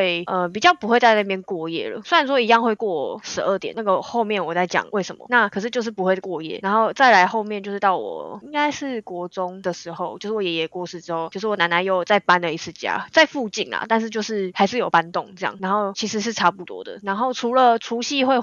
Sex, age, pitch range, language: female, 20-39, 175-215 Hz, Chinese